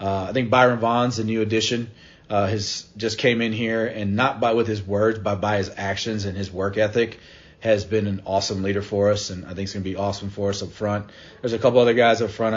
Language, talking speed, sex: English, 260 wpm, male